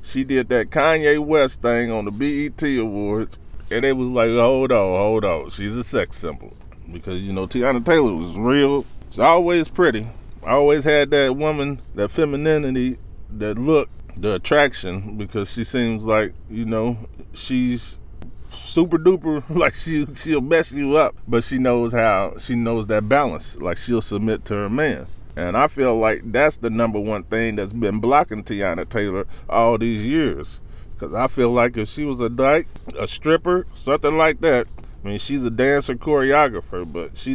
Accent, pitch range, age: American, 105-135 Hz, 20-39